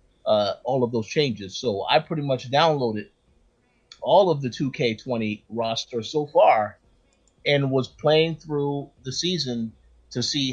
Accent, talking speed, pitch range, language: American, 140 wpm, 120-160 Hz, English